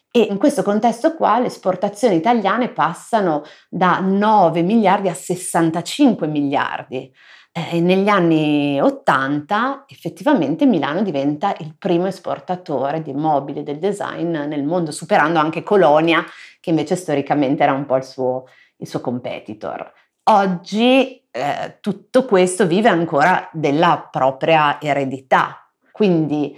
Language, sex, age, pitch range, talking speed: Italian, female, 30-49, 145-185 Hz, 125 wpm